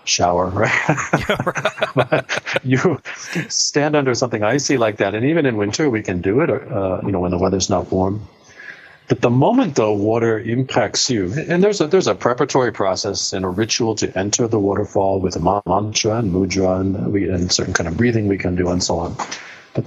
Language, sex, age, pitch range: English, male, 50-69, 95-125 Hz